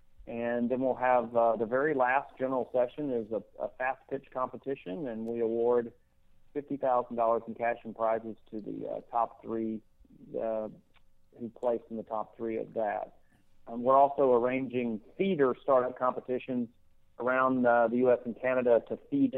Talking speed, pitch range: 160 wpm, 110-130 Hz